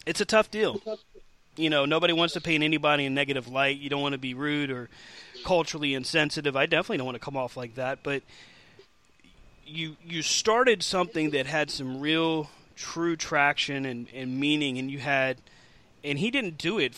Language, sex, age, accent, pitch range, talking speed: English, male, 30-49, American, 130-160 Hz, 195 wpm